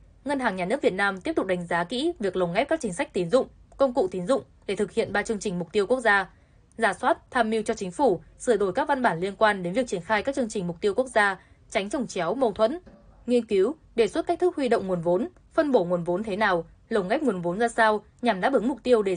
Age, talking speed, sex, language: 10-29, 285 wpm, female, Vietnamese